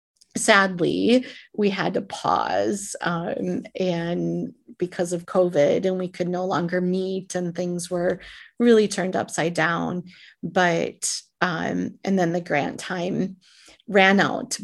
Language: English